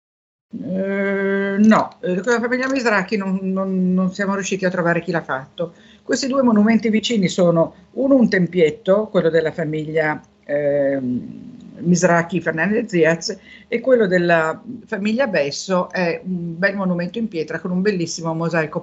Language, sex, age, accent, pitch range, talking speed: Italian, female, 50-69, native, 165-220 Hz, 135 wpm